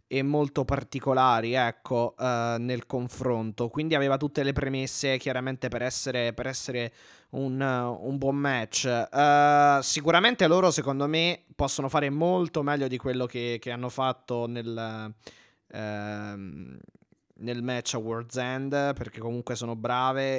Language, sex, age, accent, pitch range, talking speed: Italian, male, 20-39, native, 125-150 Hz, 125 wpm